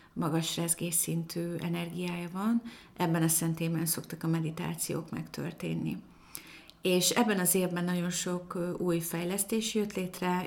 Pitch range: 170-190 Hz